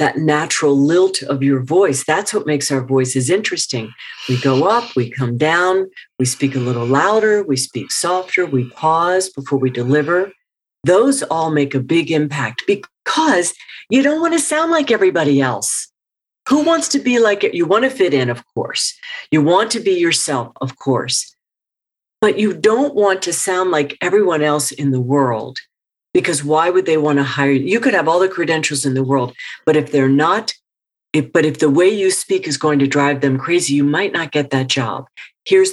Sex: female